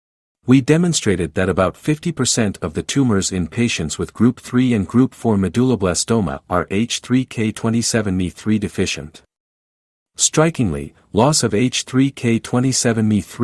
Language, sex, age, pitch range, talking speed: English, male, 50-69, 90-125 Hz, 105 wpm